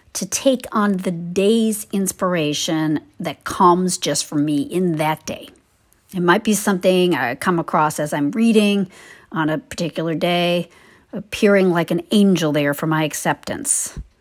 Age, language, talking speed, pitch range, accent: 50-69, English, 150 wpm, 165-215 Hz, American